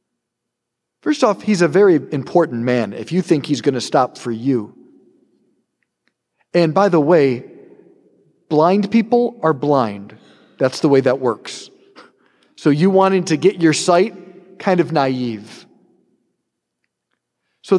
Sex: male